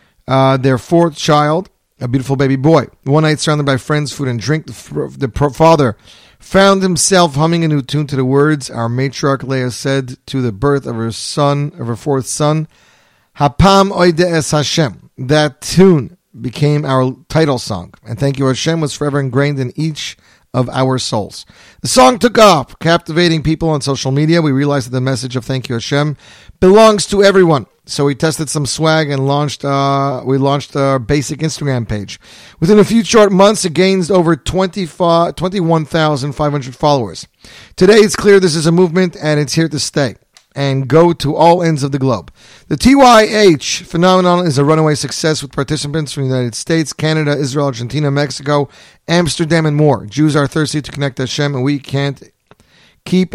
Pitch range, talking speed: 135-165 Hz, 180 wpm